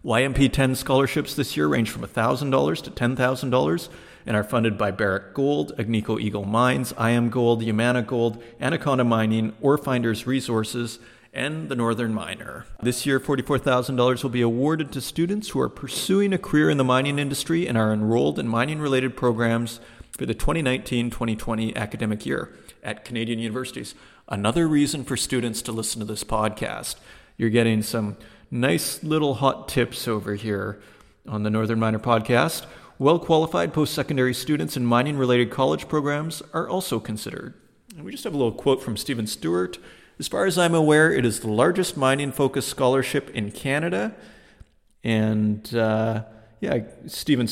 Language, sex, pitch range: English, male, 110-135 Hz